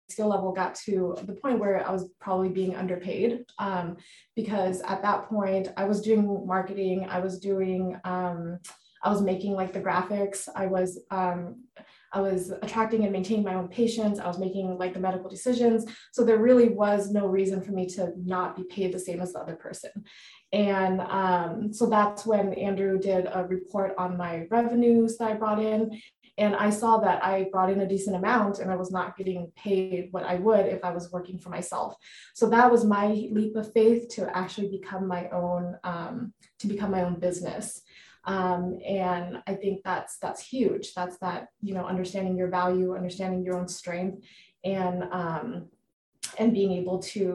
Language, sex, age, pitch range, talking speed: English, female, 20-39, 185-205 Hz, 190 wpm